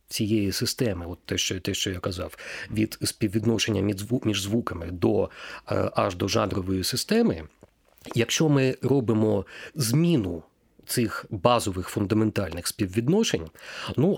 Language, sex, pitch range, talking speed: Ukrainian, male, 105-130 Hz, 115 wpm